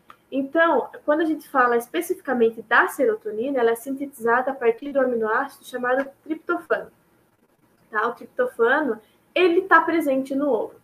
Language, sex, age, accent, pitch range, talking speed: Portuguese, female, 10-29, Brazilian, 235-300 Hz, 135 wpm